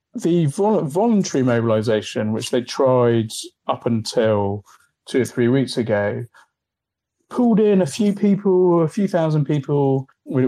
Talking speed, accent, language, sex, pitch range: 135 wpm, British, English, male, 115-145 Hz